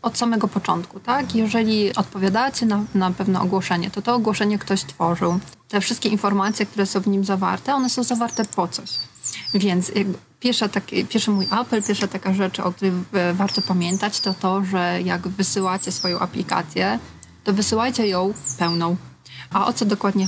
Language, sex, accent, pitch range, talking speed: Polish, female, native, 185-210 Hz, 160 wpm